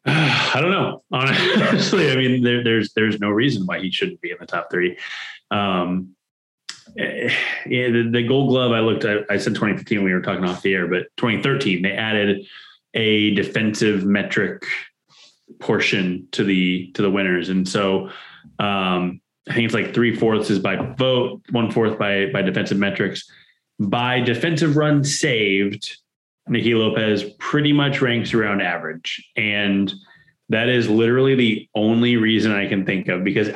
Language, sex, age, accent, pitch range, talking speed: English, male, 20-39, American, 100-130 Hz, 165 wpm